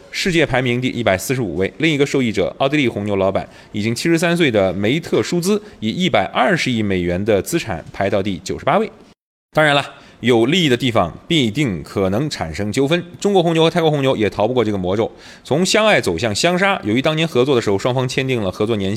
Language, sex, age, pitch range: Chinese, male, 30-49, 100-150 Hz